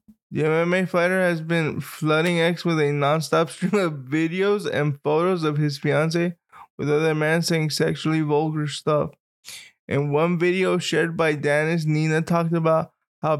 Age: 20-39